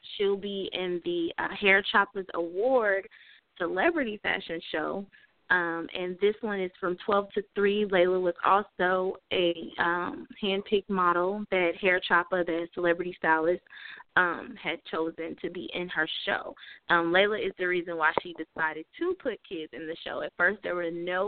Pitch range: 180-215 Hz